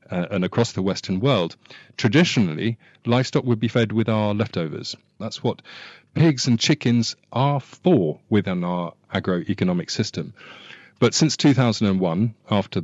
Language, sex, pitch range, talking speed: English, male, 90-115 Hz, 135 wpm